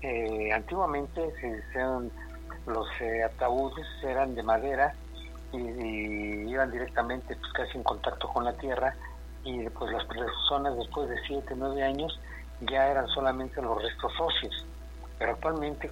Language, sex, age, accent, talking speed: Spanish, male, 50-69, Mexican, 145 wpm